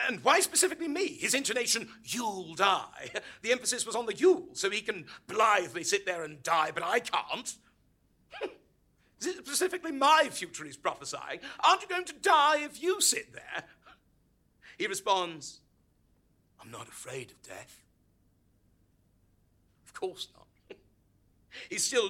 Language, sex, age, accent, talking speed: English, male, 50-69, British, 140 wpm